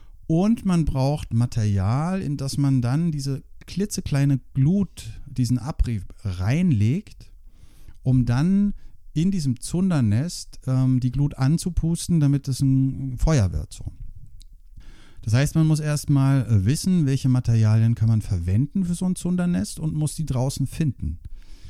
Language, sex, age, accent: German, male, 60-79, German